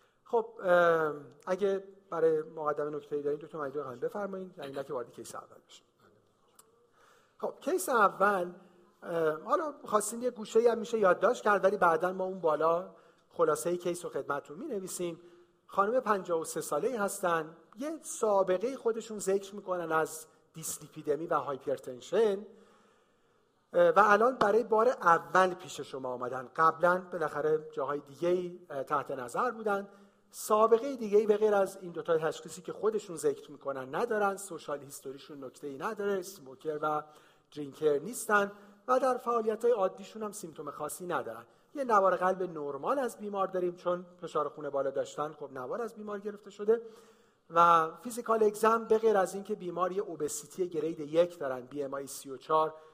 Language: Persian